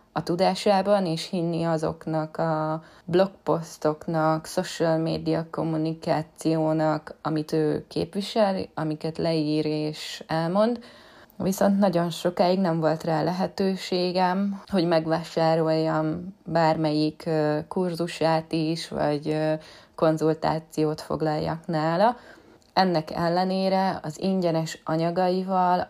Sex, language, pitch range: female, Hungarian, 160-185 Hz